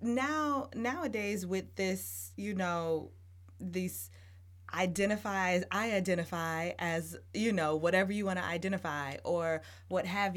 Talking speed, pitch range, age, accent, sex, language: 120 wpm, 145-210 Hz, 20-39, American, female, English